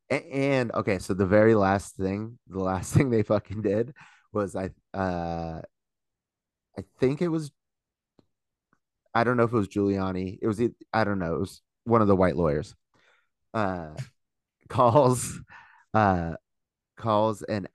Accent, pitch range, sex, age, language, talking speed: American, 90-105 Hz, male, 30-49, English, 150 wpm